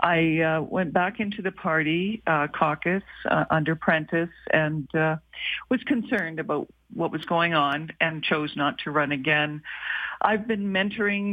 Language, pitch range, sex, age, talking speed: English, 155-195 Hz, female, 50-69, 160 wpm